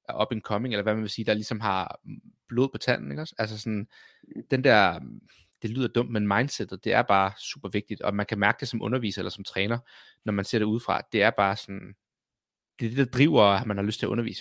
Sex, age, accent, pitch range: male, 30-49, native, 100-125 Hz